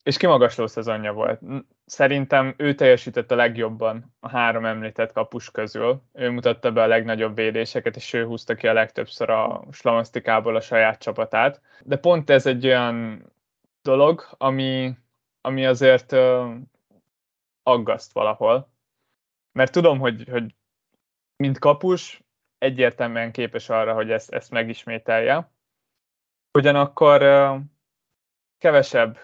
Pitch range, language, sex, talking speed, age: 115-135 Hz, Hungarian, male, 120 wpm, 20-39